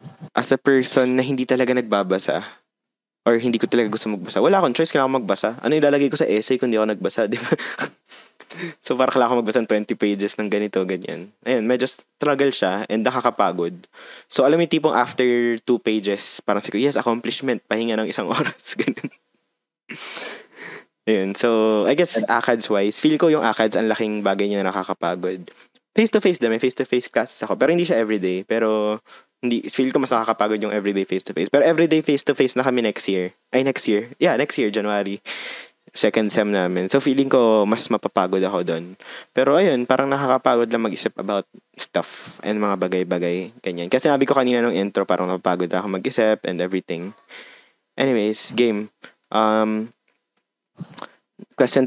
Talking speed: 175 wpm